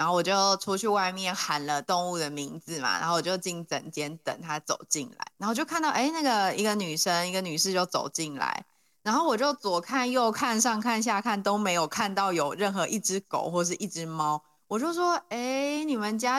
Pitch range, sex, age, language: 165-220 Hz, female, 20-39, Chinese